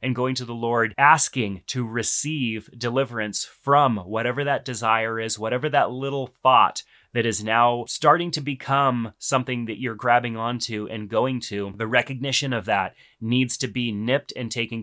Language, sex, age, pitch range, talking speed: English, male, 30-49, 110-135 Hz, 170 wpm